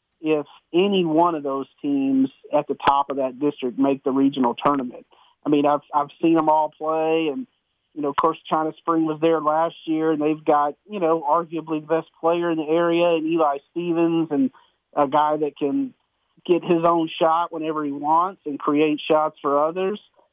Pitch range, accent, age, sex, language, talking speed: 150-170 Hz, American, 40-59, male, English, 200 wpm